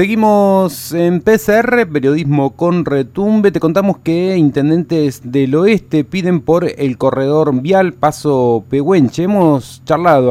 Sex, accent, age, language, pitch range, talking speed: male, Argentinian, 40-59, Spanish, 120-150 Hz, 120 wpm